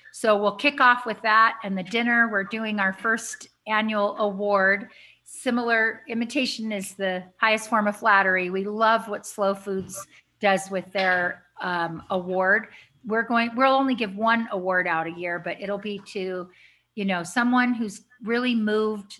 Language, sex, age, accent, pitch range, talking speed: English, female, 40-59, American, 190-225 Hz, 165 wpm